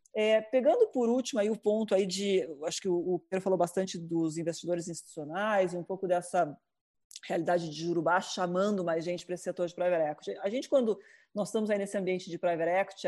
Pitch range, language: 180-225 Hz, Portuguese